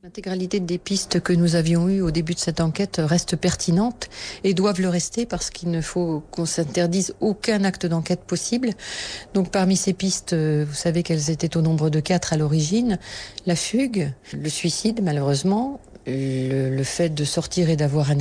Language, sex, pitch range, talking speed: French, female, 155-190 Hz, 180 wpm